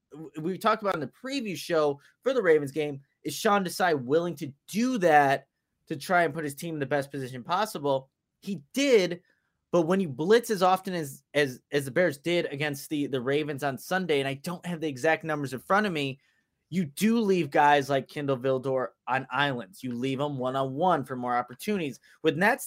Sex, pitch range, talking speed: male, 140-195 Hz, 205 wpm